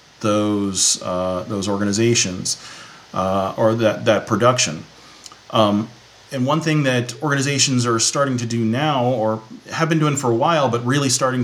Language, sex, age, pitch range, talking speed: English, male, 40-59, 110-135 Hz, 155 wpm